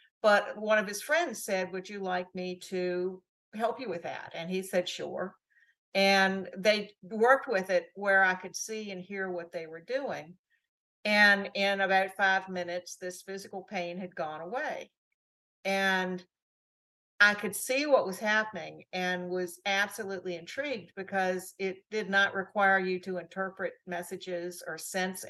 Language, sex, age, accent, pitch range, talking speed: English, female, 50-69, American, 175-205 Hz, 160 wpm